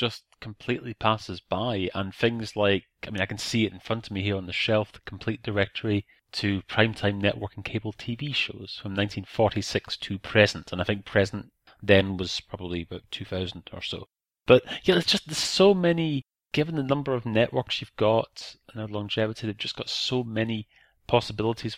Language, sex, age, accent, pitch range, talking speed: English, male, 30-49, British, 100-120 Hz, 190 wpm